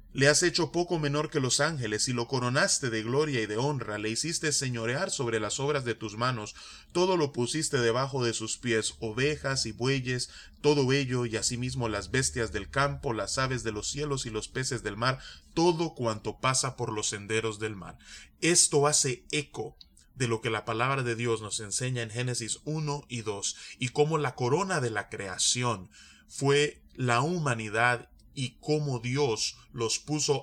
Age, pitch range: 30-49, 110-140 Hz